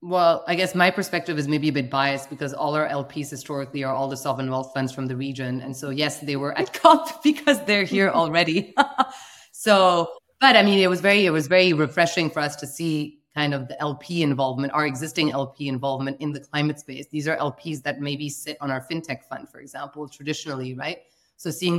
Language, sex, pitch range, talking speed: English, female, 145-170 Hz, 220 wpm